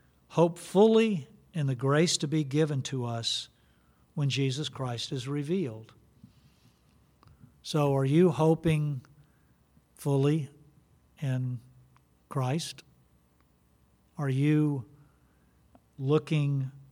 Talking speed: 90 wpm